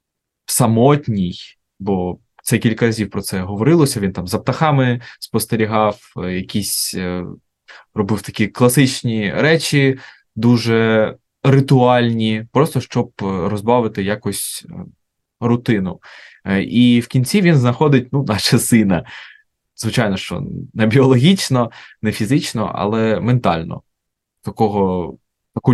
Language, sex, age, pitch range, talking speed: Ukrainian, male, 20-39, 100-125 Hz, 100 wpm